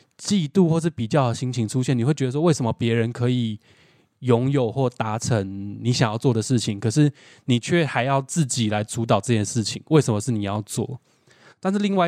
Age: 20-39